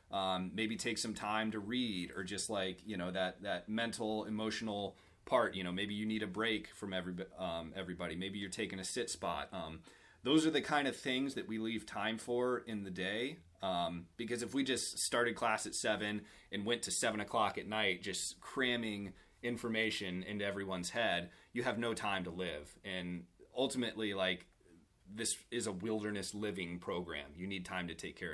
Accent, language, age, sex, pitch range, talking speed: American, English, 30-49, male, 95-115 Hz, 195 wpm